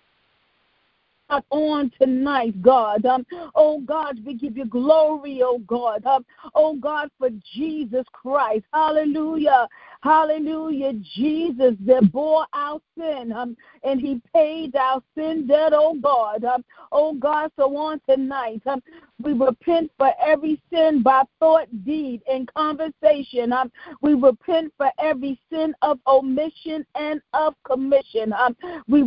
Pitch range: 265-315 Hz